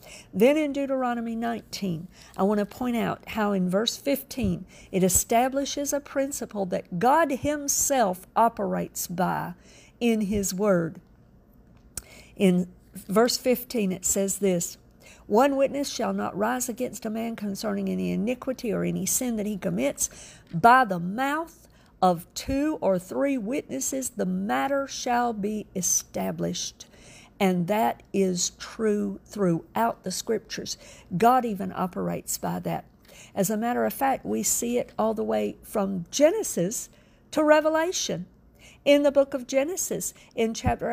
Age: 50-69